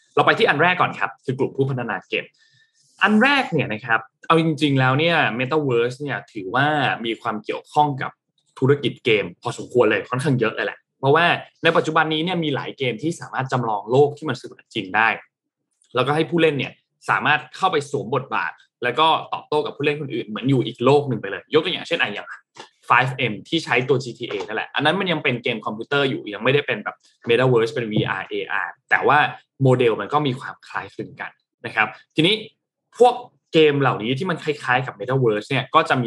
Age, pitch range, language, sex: 20-39, 125-160 Hz, Thai, male